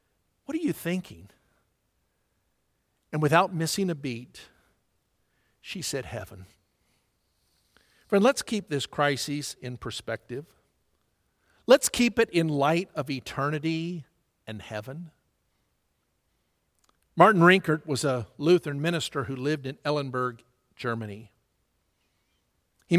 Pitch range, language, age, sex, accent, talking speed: 125-180 Hz, English, 50-69, male, American, 100 wpm